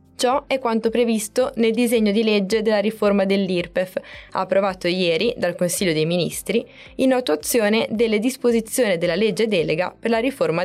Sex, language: female, Italian